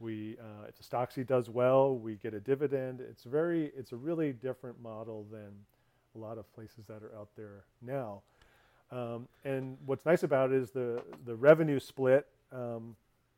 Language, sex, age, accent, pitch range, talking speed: English, male, 40-59, American, 110-135 Hz, 170 wpm